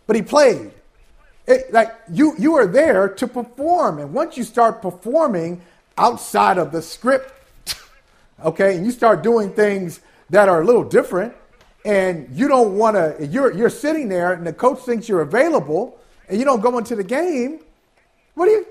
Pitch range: 195-260 Hz